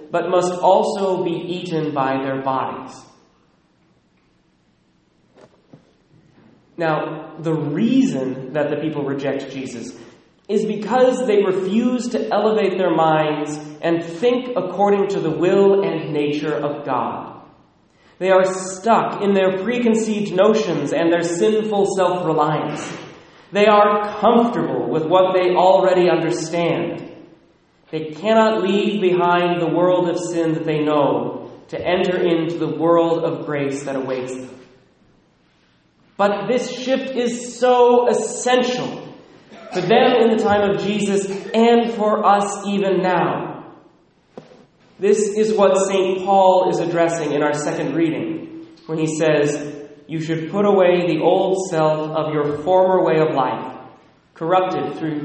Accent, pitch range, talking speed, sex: American, 155-200 Hz, 130 wpm, male